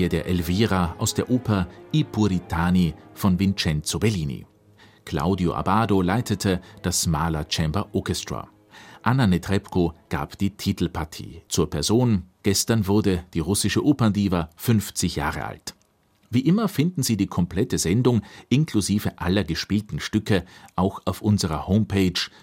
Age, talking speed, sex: 40-59, 125 wpm, male